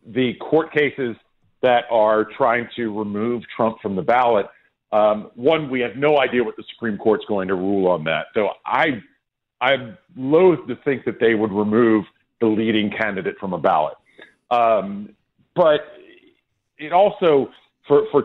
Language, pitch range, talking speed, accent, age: English, 110-150 Hz, 160 wpm, American, 50-69